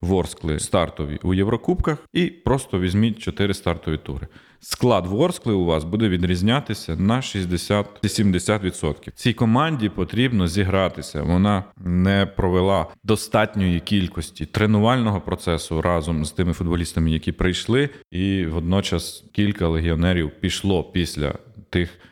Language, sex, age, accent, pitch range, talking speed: Ukrainian, male, 30-49, native, 90-115 Hz, 115 wpm